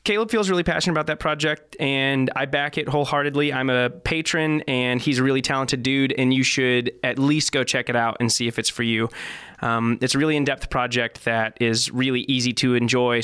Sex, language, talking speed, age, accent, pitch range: male, English, 220 wpm, 20-39, American, 130-185 Hz